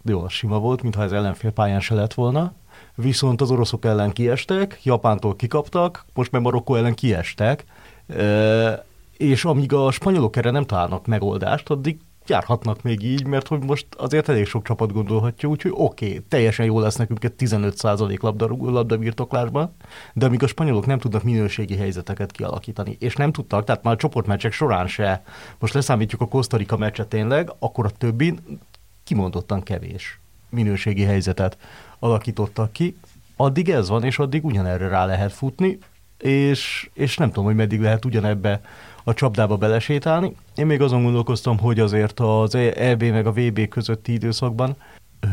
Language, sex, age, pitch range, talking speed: Hungarian, male, 30-49, 105-130 Hz, 165 wpm